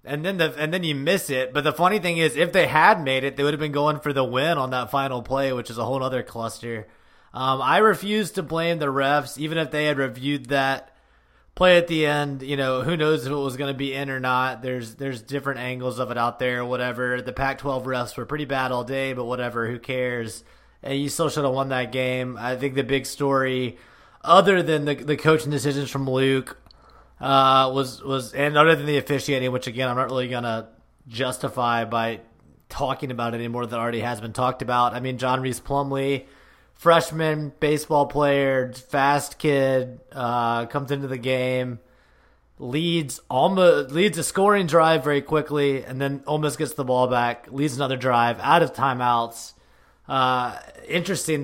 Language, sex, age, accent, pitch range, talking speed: English, male, 20-39, American, 125-145 Hz, 200 wpm